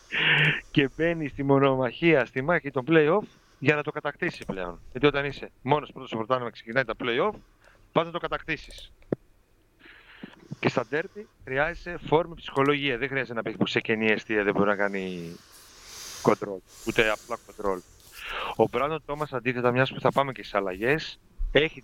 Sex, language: male, Greek